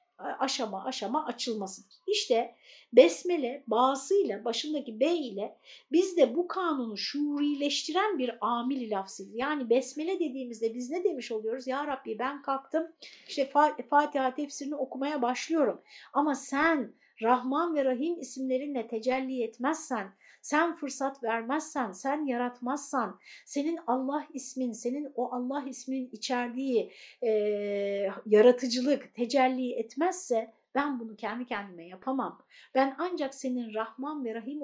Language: Turkish